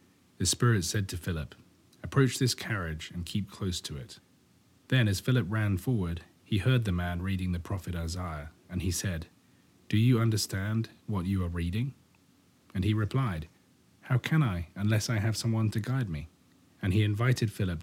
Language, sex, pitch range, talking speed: English, male, 90-110 Hz, 180 wpm